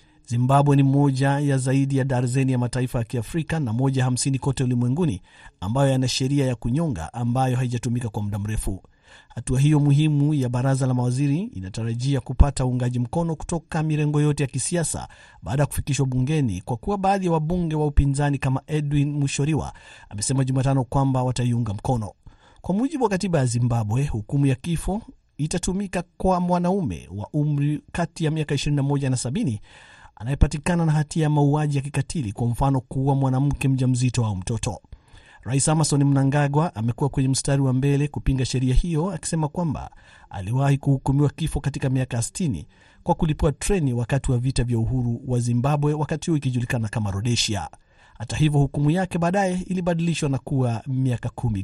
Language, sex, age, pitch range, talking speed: Swahili, male, 50-69, 125-150 Hz, 160 wpm